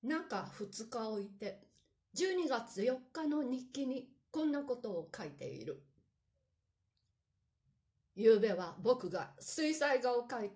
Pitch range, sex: 185-275 Hz, female